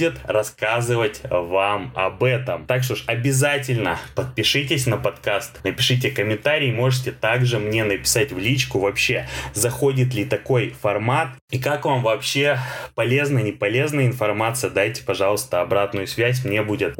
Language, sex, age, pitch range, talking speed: Russian, male, 20-39, 110-135 Hz, 135 wpm